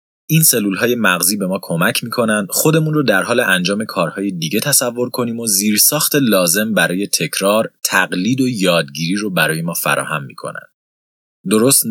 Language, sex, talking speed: Persian, male, 150 wpm